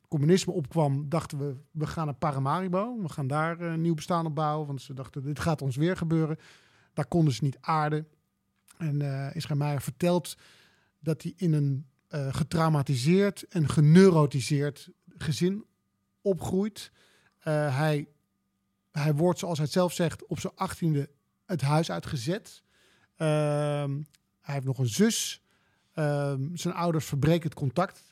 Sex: male